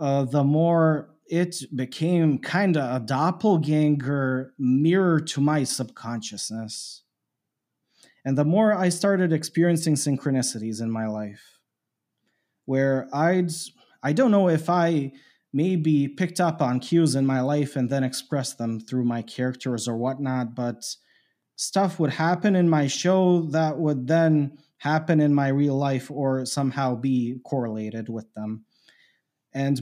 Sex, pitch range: male, 130-170 Hz